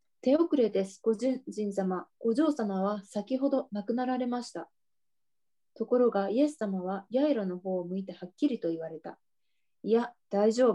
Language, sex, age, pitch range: Japanese, female, 20-39, 195-250 Hz